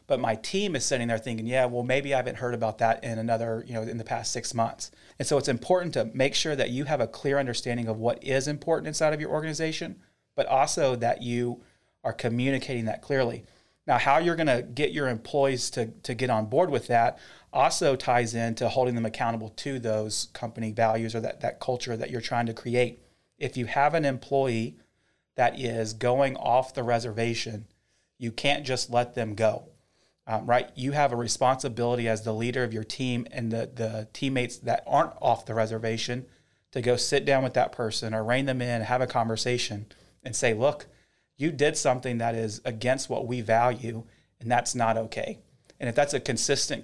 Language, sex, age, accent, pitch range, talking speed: English, male, 30-49, American, 115-130 Hz, 205 wpm